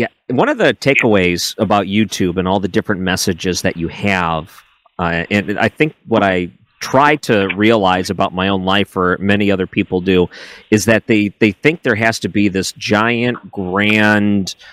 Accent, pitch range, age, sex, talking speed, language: American, 95-110 Hz, 40-59, male, 185 wpm, English